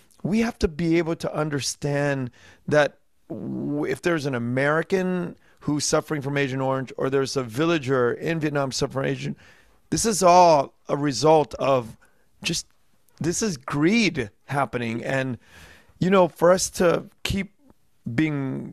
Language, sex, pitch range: English, male, 130-165 Hz